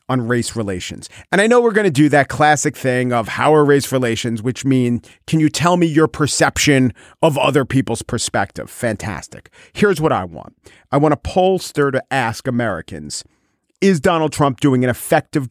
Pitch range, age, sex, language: 115-155 Hz, 40-59, male, English